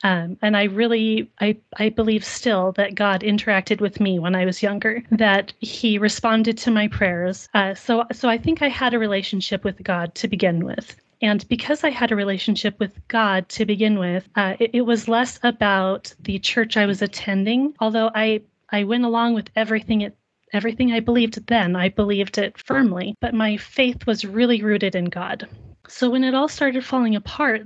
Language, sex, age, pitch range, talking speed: English, female, 30-49, 200-230 Hz, 195 wpm